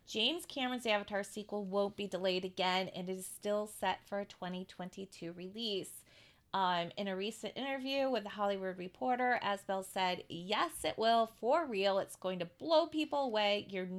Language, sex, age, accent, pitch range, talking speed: English, female, 30-49, American, 185-225 Hz, 170 wpm